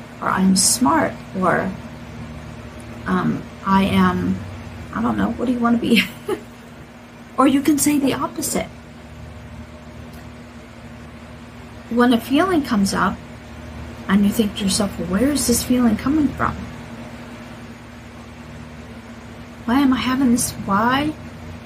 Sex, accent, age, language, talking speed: female, American, 40-59, English, 125 wpm